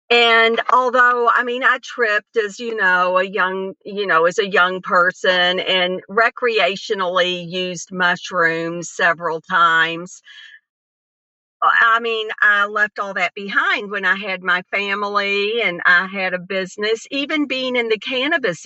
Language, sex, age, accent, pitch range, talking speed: English, female, 50-69, American, 185-235 Hz, 145 wpm